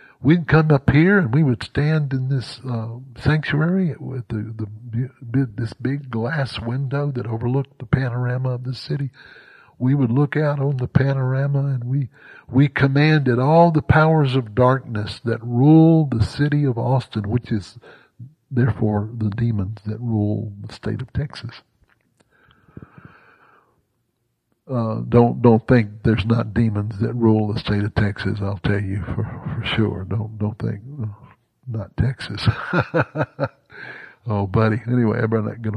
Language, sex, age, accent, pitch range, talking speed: English, male, 60-79, American, 110-140 Hz, 150 wpm